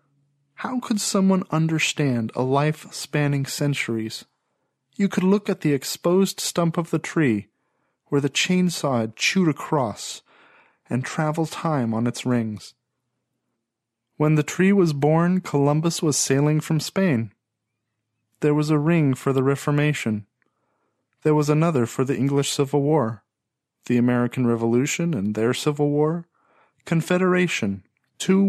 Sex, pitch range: male, 120-155 Hz